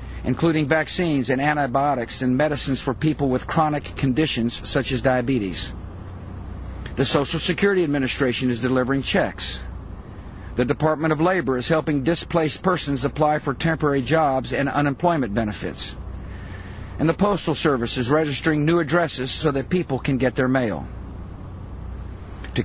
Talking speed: 140 wpm